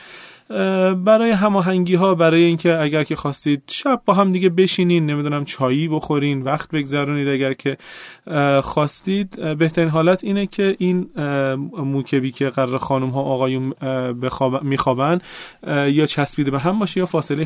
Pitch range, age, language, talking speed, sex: 130-160 Hz, 30-49, Persian, 135 wpm, male